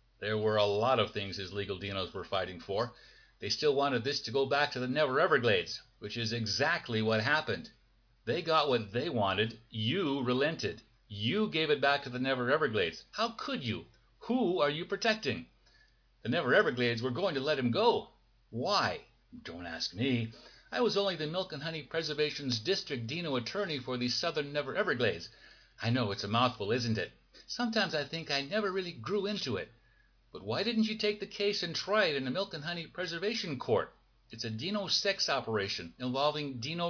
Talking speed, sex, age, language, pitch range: 195 wpm, male, 50-69, English, 120-185 Hz